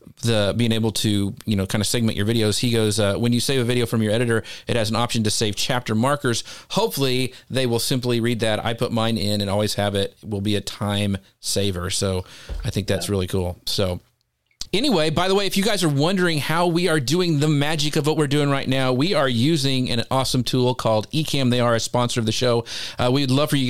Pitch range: 110-140 Hz